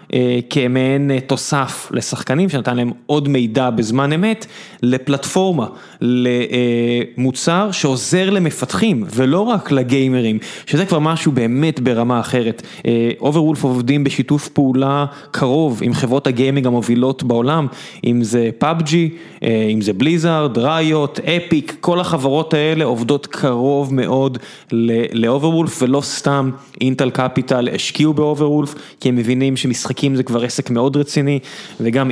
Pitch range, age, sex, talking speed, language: 125-150 Hz, 20-39, male, 130 wpm, Hebrew